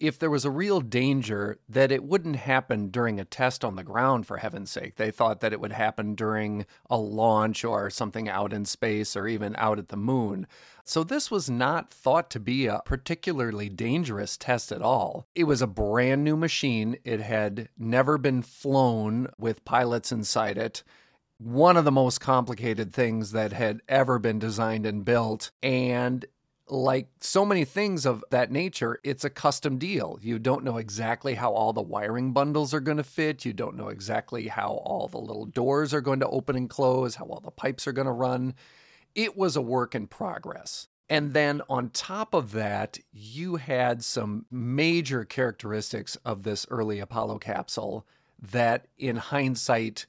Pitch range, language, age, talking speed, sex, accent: 110-140 Hz, English, 40-59, 185 wpm, male, American